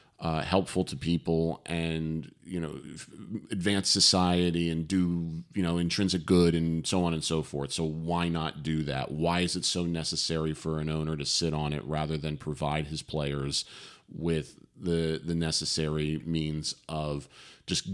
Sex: male